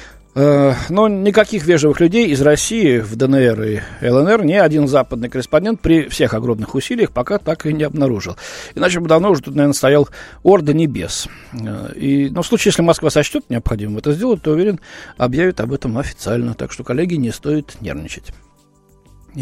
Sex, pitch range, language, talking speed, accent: male, 125-180 Hz, Russian, 165 wpm, native